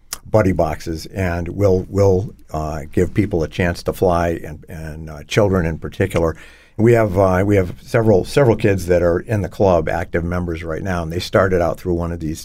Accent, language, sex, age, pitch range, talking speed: American, English, male, 50-69, 85-95 Hz, 205 wpm